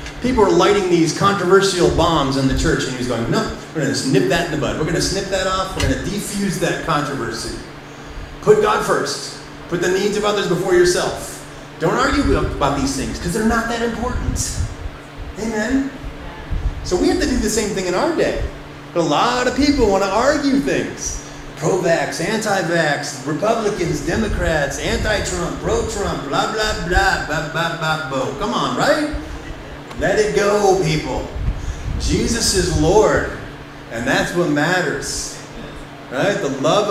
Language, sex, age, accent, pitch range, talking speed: English, male, 30-49, American, 175-245 Hz, 170 wpm